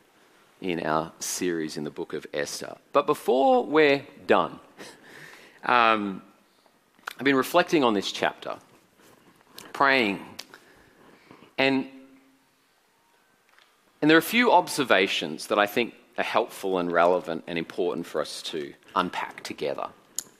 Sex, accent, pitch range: male, Australian, 110-150 Hz